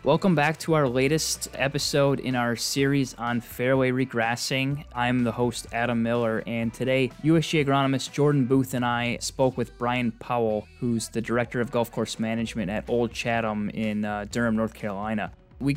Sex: male